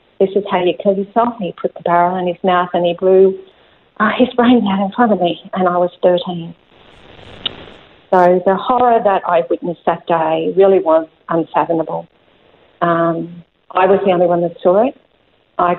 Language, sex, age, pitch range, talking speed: English, female, 50-69, 165-190 Hz, 185 wpm